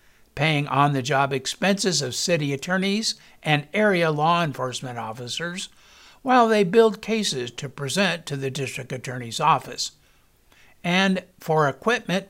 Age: 60-79